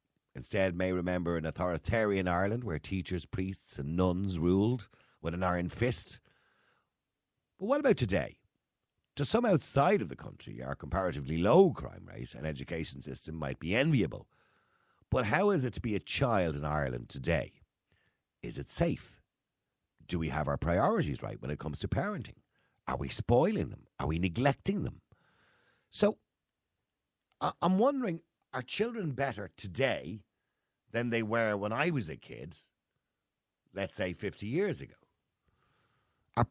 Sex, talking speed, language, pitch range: male, 150 wpm, English, 85-120 Hz